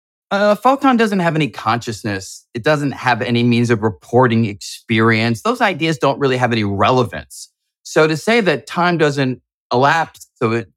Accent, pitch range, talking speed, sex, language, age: American, 110-150 Hz, 165 wpm, male, English, 30-49